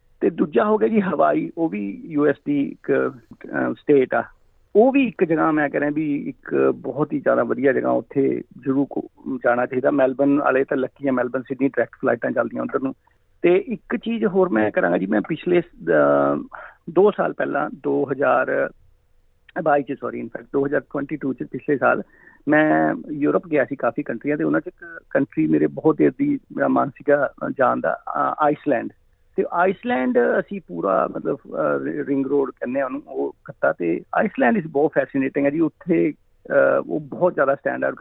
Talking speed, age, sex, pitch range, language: 165 wpm, 50-69, male, 135-195 Hz, Punjabi